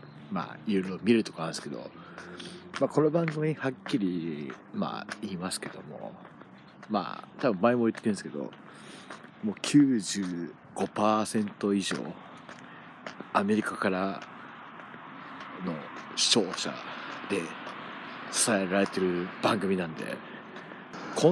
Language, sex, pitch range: Japanese, male, 95-145 Hz